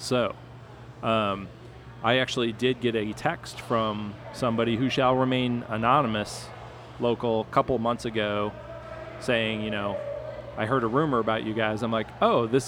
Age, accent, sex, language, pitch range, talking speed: 30-49, American, male, English, 110-120 Hz, 155 wpm